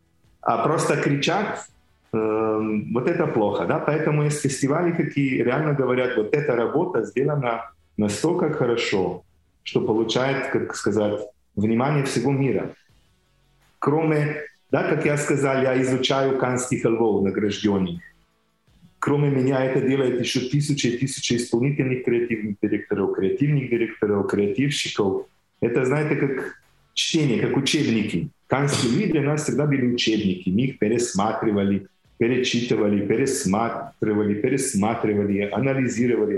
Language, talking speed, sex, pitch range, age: Ukrainian, 110 wpm, male, 110-150 Hz, 40-59